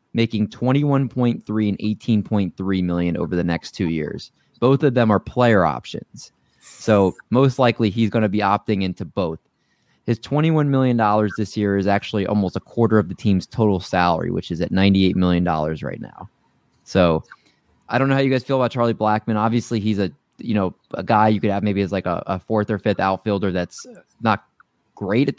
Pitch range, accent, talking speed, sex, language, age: 95-115 Hz, American, 200 wpm, male, English, 20-39